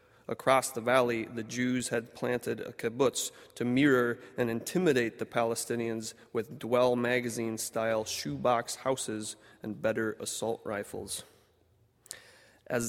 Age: 30-49